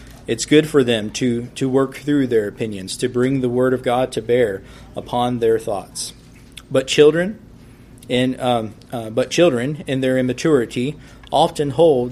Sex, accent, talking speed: male, American, 165 wpm